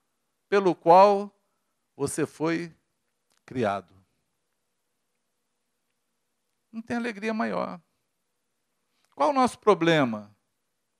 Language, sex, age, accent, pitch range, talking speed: Portuguese, male, 50-69, Brazilian, 130-195 Hz, 70 wpm